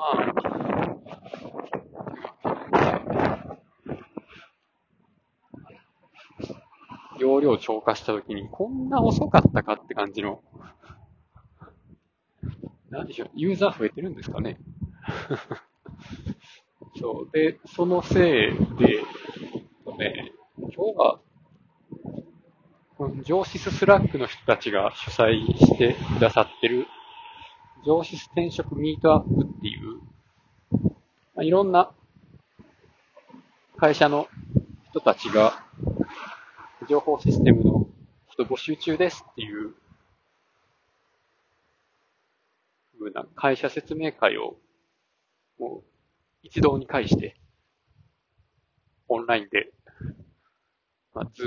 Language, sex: Japanese, male